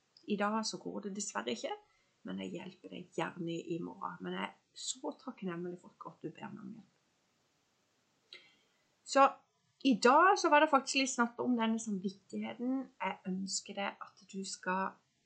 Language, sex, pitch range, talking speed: English, female, 185-235 Hz, 175 wpm